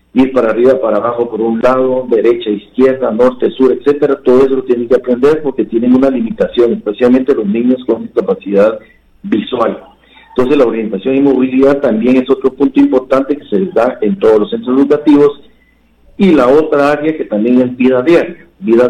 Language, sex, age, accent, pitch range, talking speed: Spanish, male, 50-69, Mexican, 115-140 Hz, 185 wpm